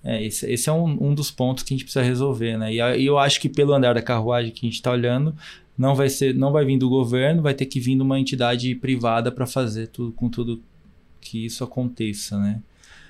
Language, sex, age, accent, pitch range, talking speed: Portuguese, male, 20-39, Brazilian, 110-130 Hz, 240 wpm